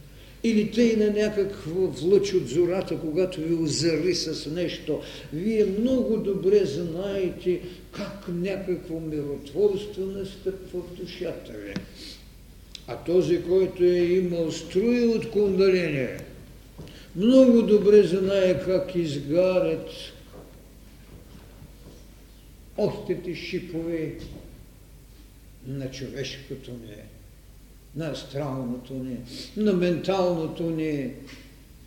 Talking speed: 85 wpm